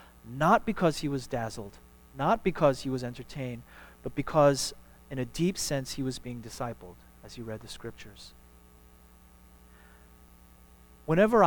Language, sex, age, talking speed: English, male, 30-49, 135 wpm